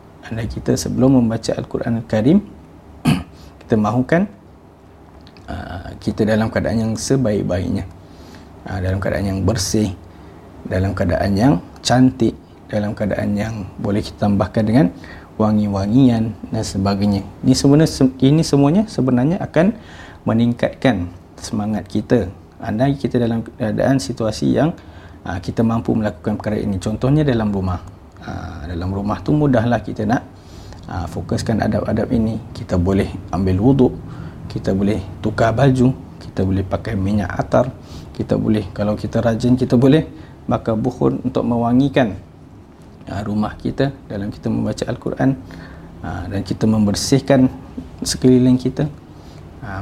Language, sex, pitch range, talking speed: Malay, male, 95-120 Hz, 130 wpm